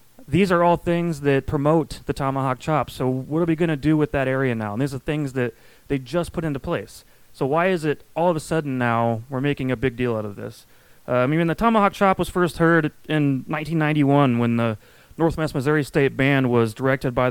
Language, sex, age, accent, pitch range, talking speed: English, male, 30-49, American, 125-155 Hz, 235 wpm